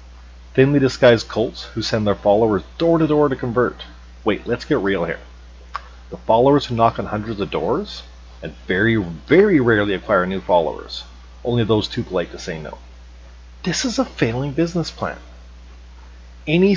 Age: 40-59